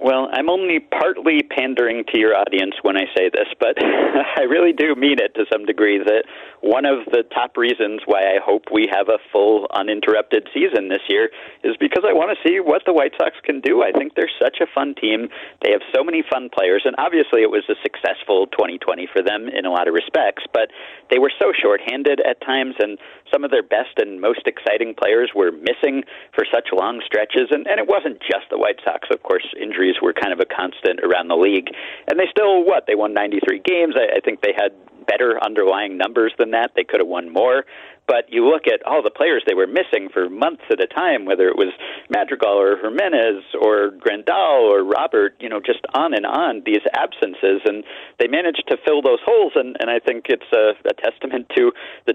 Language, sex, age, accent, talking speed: English, male, 50-69, American, 220 wpm